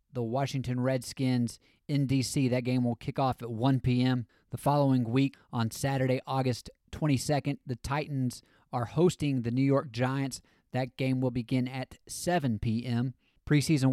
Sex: male